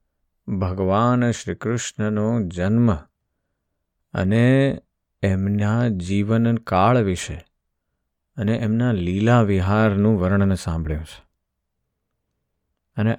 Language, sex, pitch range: Gujarati, male, 90-115 Hz